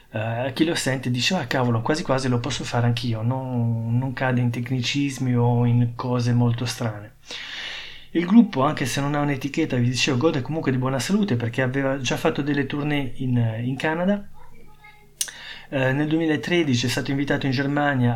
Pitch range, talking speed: 125-150 Hz, 180 wpm